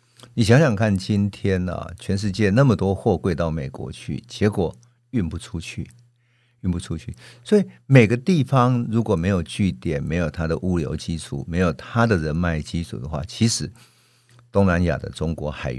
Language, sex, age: Chinese, male, 50-69